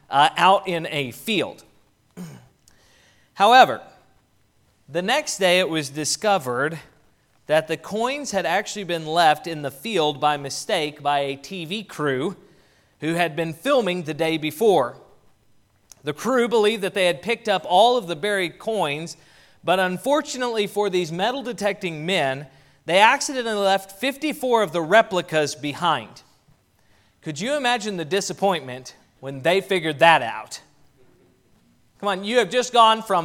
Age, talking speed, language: 30-49, 145 wpm, English